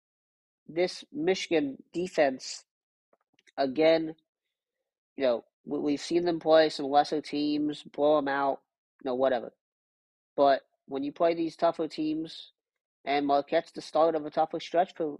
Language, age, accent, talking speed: English, 40-59, American, 140 wpm